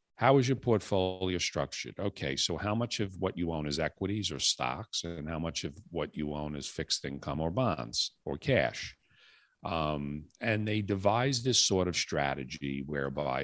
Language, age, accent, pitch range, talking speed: English, 50-69, American, 75-100 Hz, 180 wpm